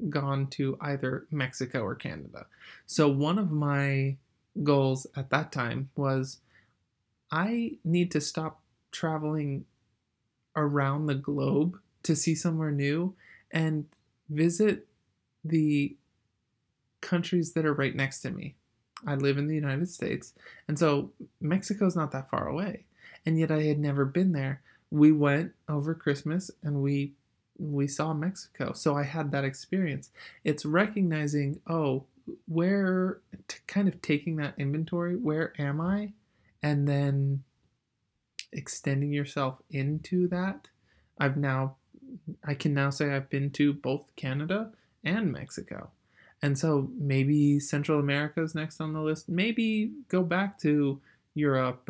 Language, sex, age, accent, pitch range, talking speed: English, male, 20-39, American, 135-165 Hz, 135 wpm